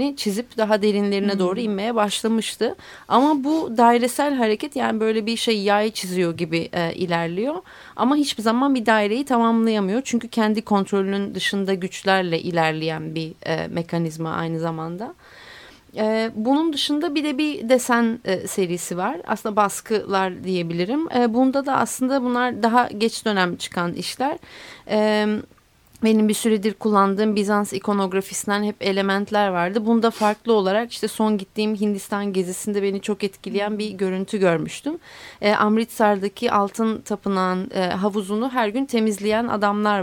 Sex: female